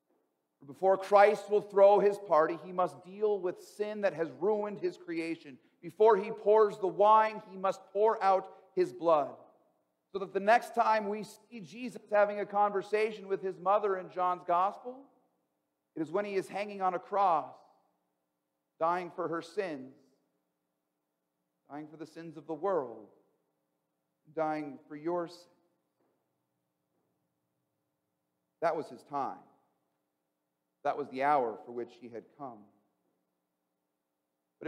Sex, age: male, 50-69